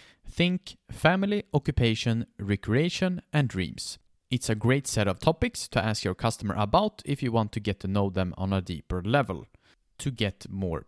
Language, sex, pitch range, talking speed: English, male, 100-145 Hz, 175 wpm